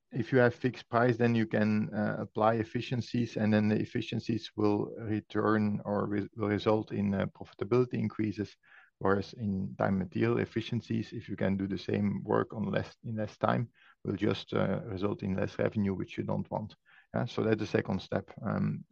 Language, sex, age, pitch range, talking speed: English, male, 50-69, 100-115 Hz, 190 wpm